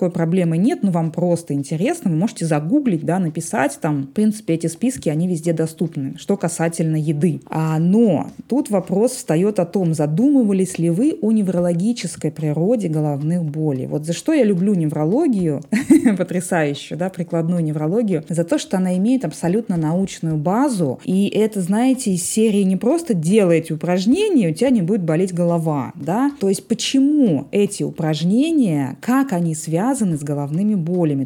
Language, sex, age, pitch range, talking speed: Russian, female, 20-39, 160-205 Hz, 155 wpm